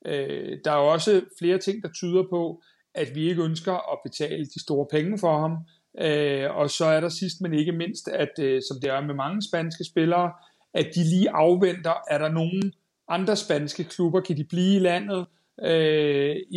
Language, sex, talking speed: Danish, male, 195 wpm